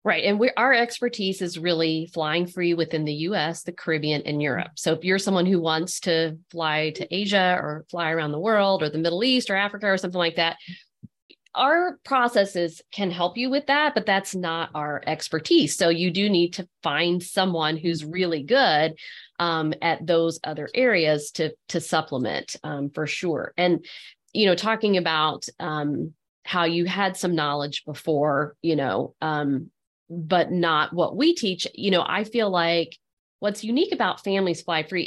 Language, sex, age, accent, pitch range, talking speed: English, female, 40-59, American, 160-205 Hz, 180 wpm